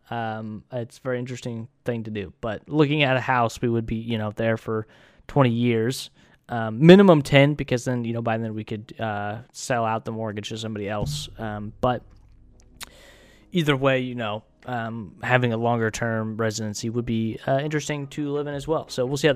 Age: 20-39